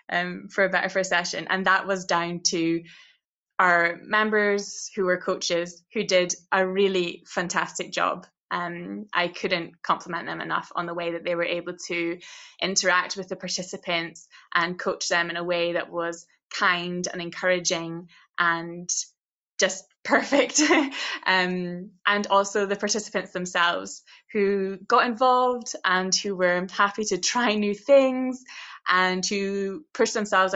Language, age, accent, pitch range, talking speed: English, 20-39, British, 175-200 Hz, 145 wpm